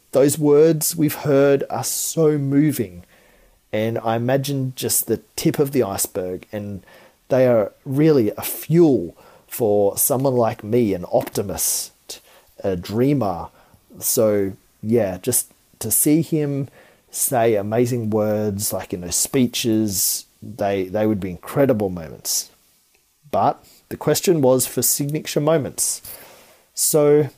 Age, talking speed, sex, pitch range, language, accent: 30-49, 130 wpm, male, 105-140 Hz, English, Australian